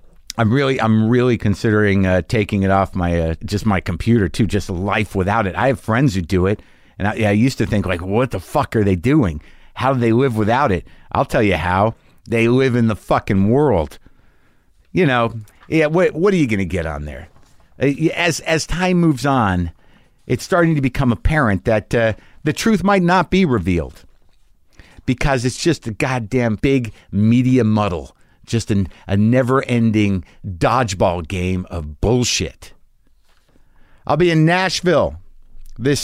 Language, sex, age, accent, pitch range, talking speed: English, male, 50-69, American, 95-130 Hz, 175 wpm